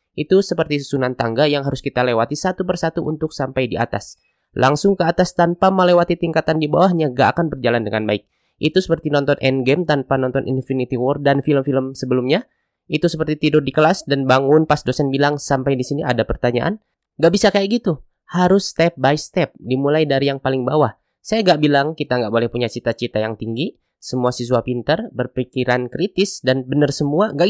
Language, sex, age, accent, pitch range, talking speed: Indonesian, male, 20-39, native, 130-175 Hz, 185 wpm